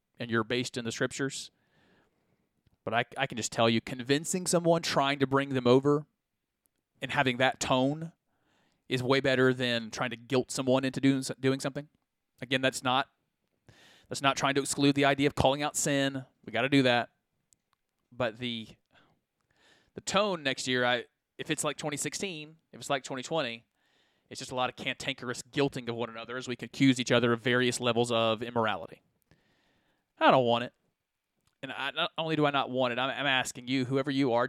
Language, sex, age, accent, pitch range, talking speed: English, male, 30-49, American, 125-150 Hz, 195 wpm